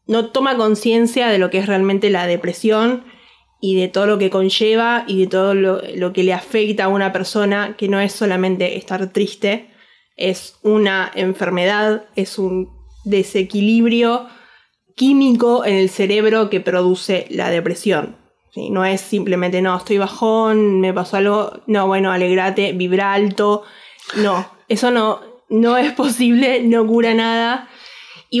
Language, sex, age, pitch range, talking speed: Spanish, female, 20-39, 185-225 Hz, 150 wpm